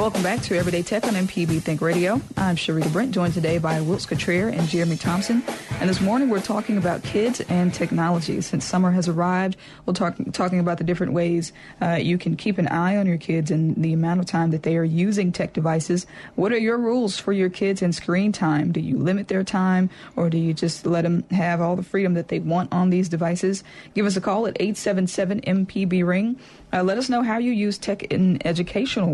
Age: 20-39